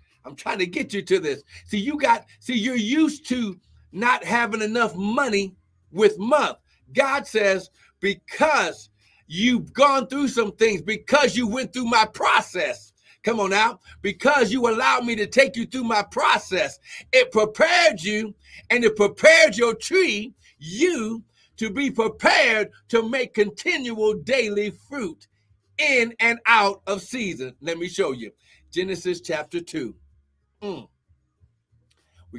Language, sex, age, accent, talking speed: English, male, 60-79, American, 145 wpm